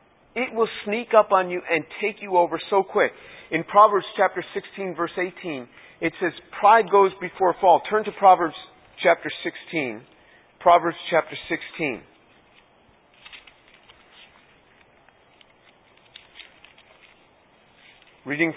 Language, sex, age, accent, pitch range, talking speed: English, male, 40-59, American, 165-220 Hz, 105 wpm